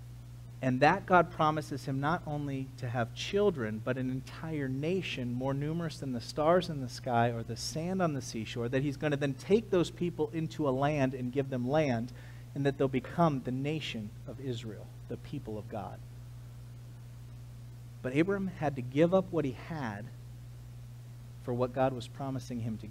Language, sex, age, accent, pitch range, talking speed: English, male, 40-59, American, 120-145 Hz, 185 wpm